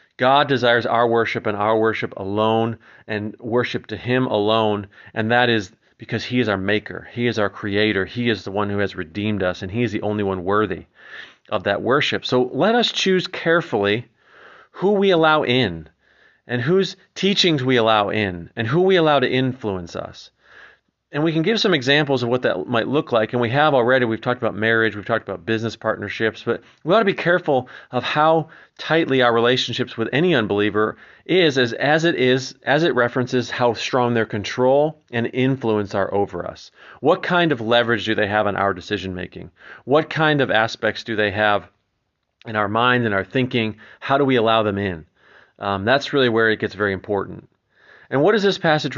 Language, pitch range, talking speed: English, 105-130 Hz, 200 wpm